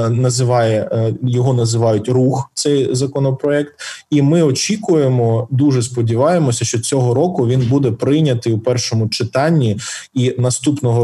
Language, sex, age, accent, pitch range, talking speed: Ukrainian, male, 20-39, native, 115-140 Hz, 120 wpm